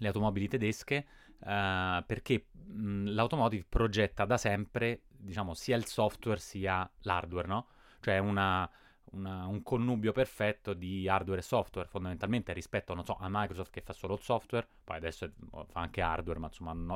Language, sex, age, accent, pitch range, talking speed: Italian, male, 20-39, native, 95-115 Hz, 165 wpm